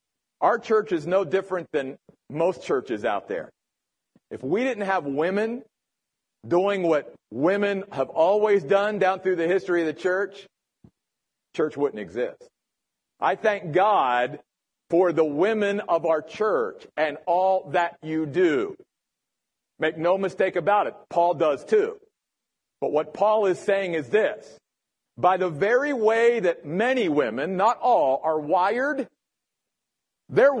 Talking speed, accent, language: 140 wpm, American, English